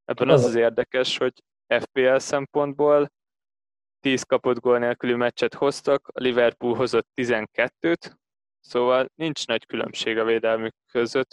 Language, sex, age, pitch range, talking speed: Hungarian, male, 20-39, 115-130 Hz, 125 wpm